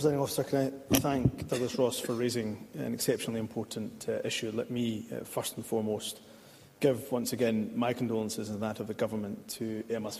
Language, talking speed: English, 175 wpm